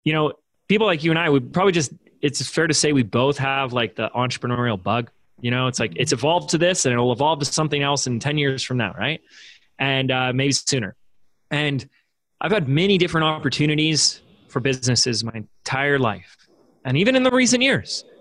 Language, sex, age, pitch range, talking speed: English, male, 20-39, 120-155 Hz, 205 wpm